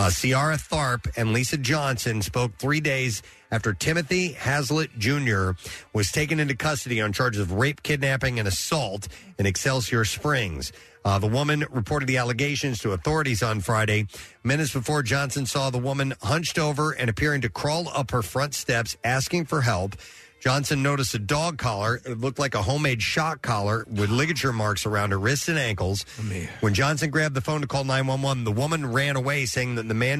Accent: American